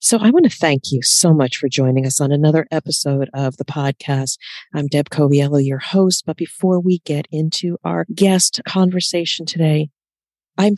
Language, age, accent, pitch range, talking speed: English, 40-59, American, 155-195 Hz, 180 wpm